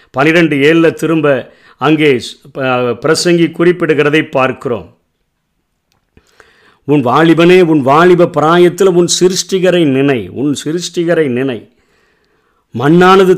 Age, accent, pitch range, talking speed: 50-69, native, 125-160 Hz, 85 wpm